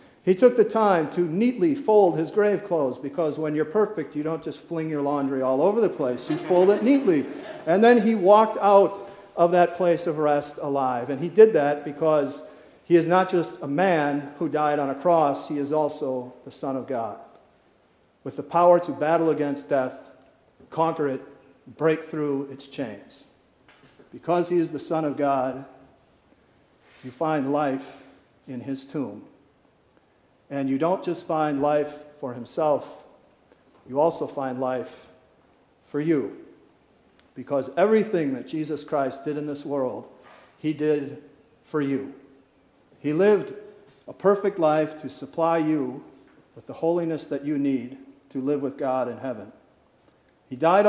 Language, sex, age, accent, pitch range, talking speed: English, male, 50-69, American, 140-175 Hz, 160 wpm